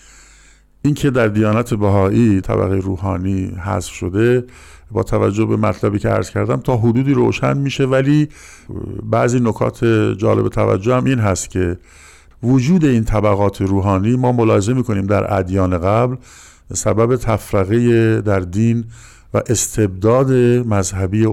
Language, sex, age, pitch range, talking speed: Persian, male, 50-69, 95-115 Hz, 125 wpm